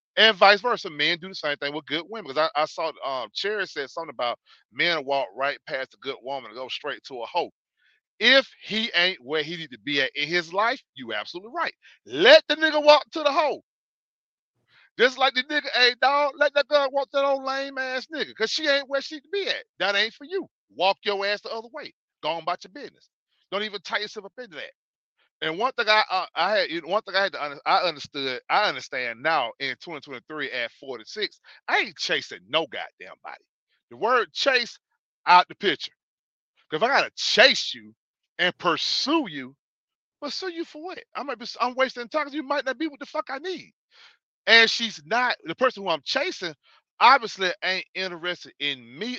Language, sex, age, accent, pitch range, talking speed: English, male, 40-59, American, 175-280 Hz, 210 wpm